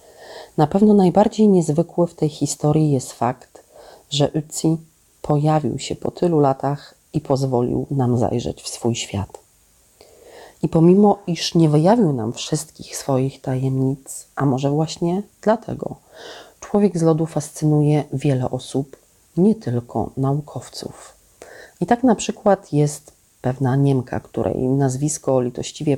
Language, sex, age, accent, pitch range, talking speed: Polish, female, 40-59, native, 135-170 Hz, 125 wpm